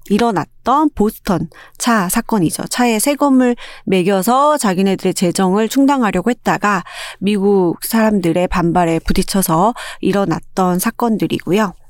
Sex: female